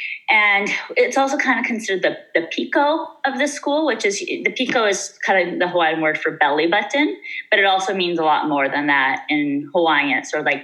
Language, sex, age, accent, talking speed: English, female, 30-49, American, 220 wpm